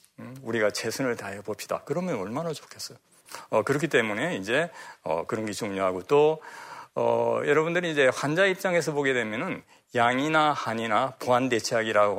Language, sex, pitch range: Korean, male, 105-145 Hz